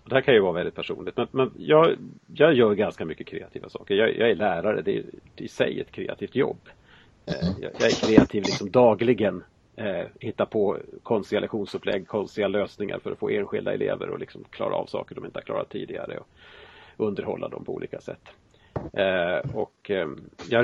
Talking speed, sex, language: 175 wpm, male, Swedish